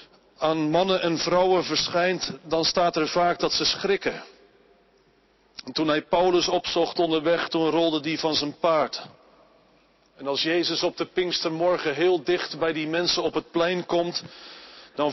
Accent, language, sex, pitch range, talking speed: Dutch, Dutch, male, 150-175 Hz, 160 wpm